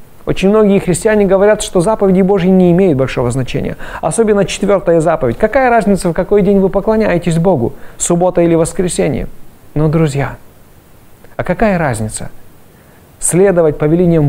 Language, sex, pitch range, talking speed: Russian, male, 130-180 Hz, 135 wpm